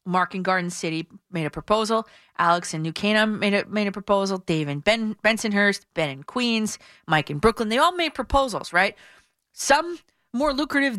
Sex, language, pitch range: female, English, 165-230 Hz